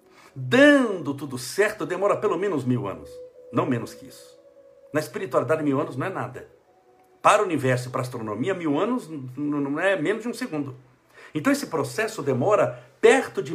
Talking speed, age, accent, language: 175 wpm, 60-79, Brazilian, Portuguese